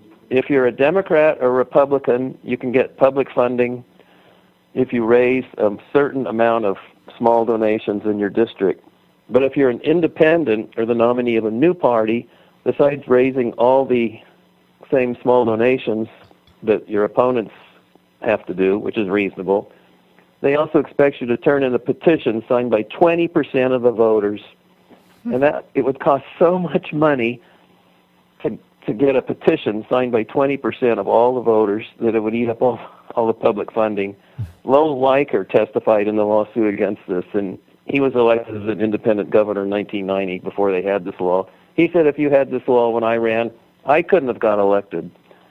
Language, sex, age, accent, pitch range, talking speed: English, male, 50-69, American, 110-135 Hz, 175 wpm